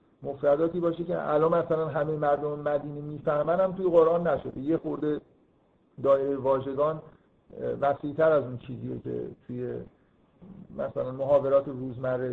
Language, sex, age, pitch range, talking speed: Persian, male, 50-69, 135-170 Hz, 120 wpm